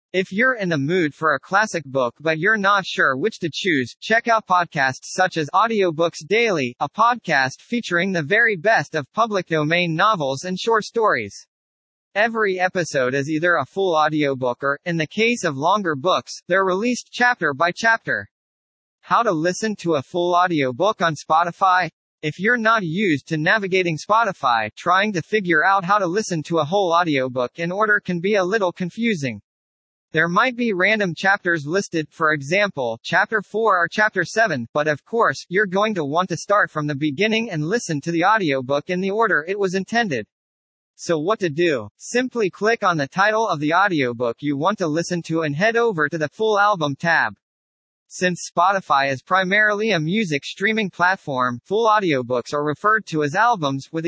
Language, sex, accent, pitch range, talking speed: English, male, American, 150-210 Hz, 185 wpm